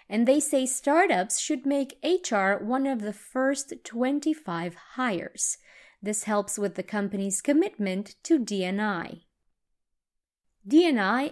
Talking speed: 115 wpm